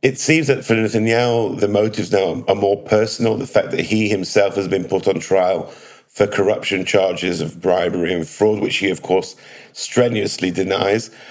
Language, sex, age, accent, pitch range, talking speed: English, male, 50-69, British, 100-120 Hz, 180 wpm